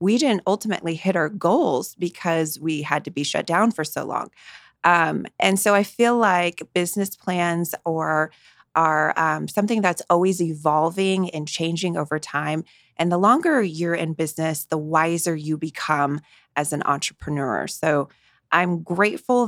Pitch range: 150-180 Hz